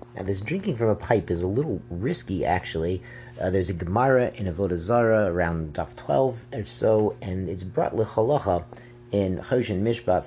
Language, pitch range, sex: English, 95-120 Hz, male